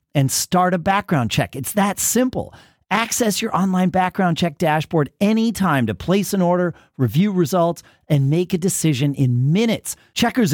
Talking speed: 160 wpm